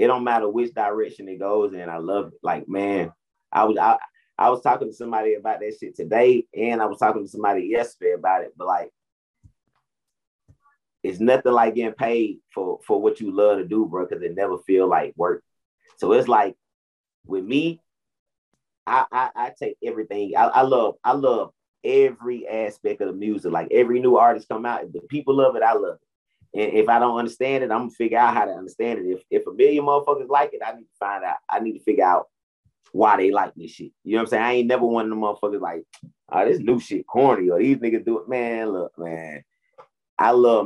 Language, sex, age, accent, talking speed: English, male, 30-49, American, 225 wpm